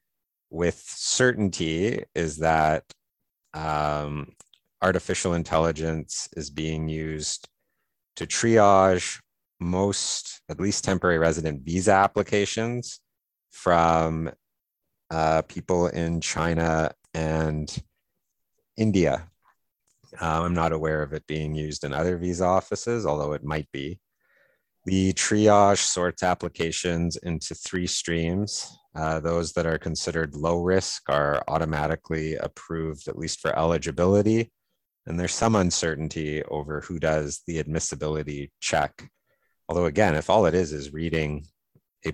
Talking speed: 115 wpm